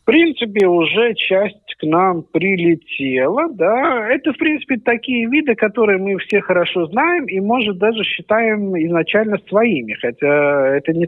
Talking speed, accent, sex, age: 145 wpm, native, male, 50-69